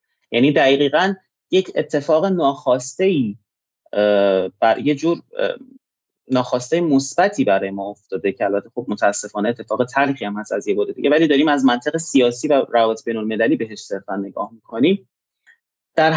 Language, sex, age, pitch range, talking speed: Persian, male, 30-49, 115-175 Hz, 150 wpm